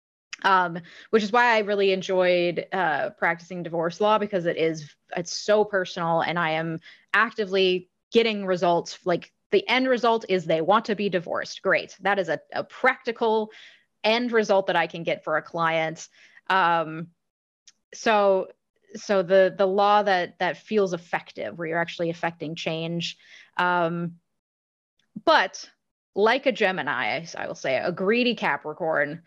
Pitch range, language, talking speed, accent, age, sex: 170-205 Hz, English, 150 wpm, American, 20-39, female